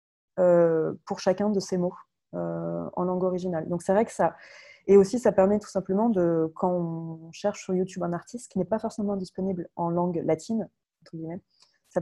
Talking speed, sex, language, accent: 190 wpm, female, French, French